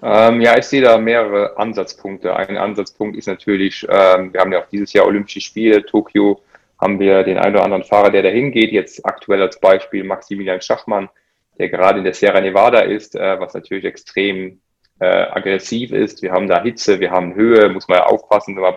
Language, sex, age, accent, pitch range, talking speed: English, male, 20-39, German, 95-110 Hz, 190 wpm